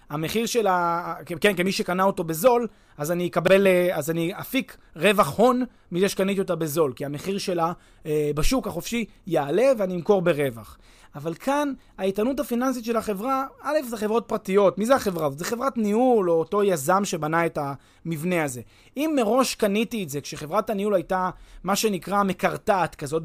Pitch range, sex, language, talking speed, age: 160-235 Hz, male, Hebrew, 165 wpm, 30-49